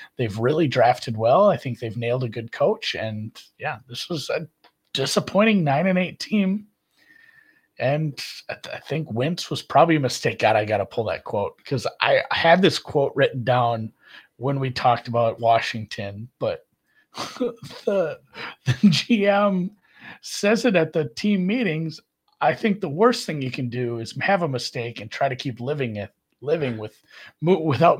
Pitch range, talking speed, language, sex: 115-175 Hz, 175 wpm, English, male